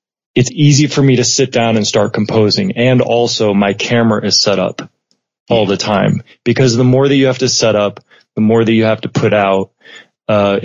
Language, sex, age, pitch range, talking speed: English, male, 20-39, 105-130 Hz, 215 wpm